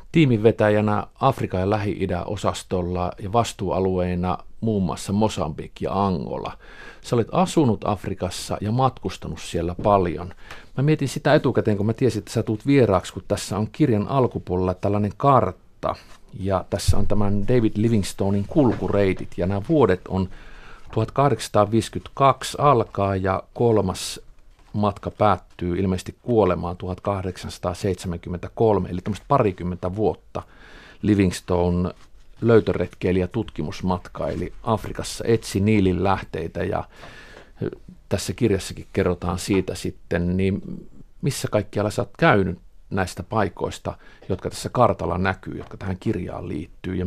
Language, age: Finnish, 50-69